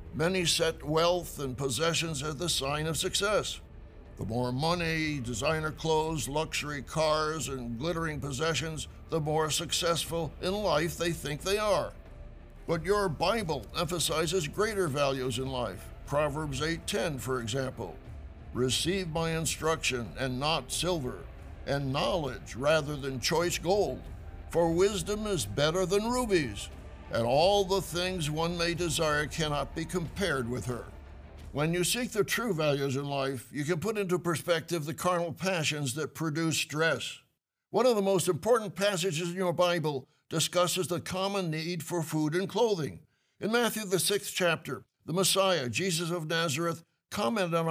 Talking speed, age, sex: 150 wpm, 60-79, male